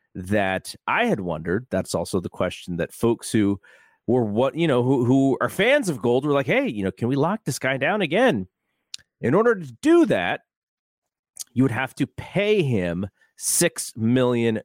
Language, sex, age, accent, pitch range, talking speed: English, male, 30-49, American, 95-140 Hz, 190 wpm